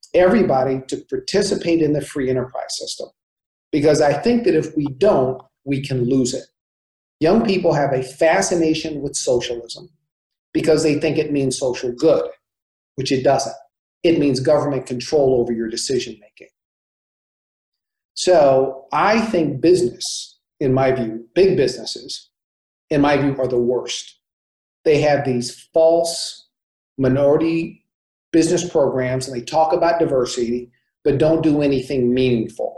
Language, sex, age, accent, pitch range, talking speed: English, male, 40-59, American, 130-160 Hz, 140 wpm